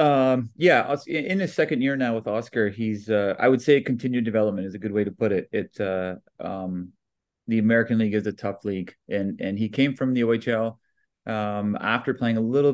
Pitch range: 100-120 Hz